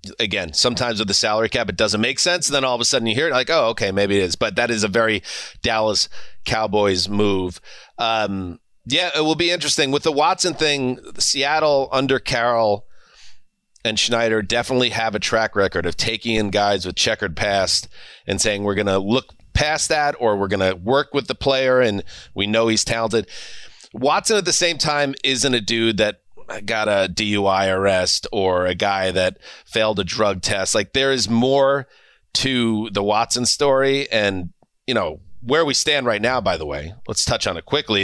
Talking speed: 200 wpm